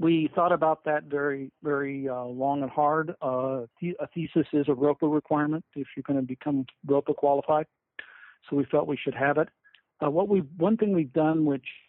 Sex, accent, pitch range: male, American, 130-155 Hz